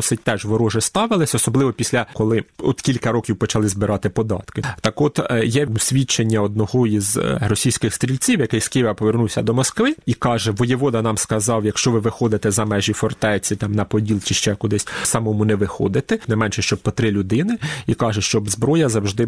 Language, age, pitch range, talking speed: Ukrainian, 30-49, 105-130 Hz, 175 wpm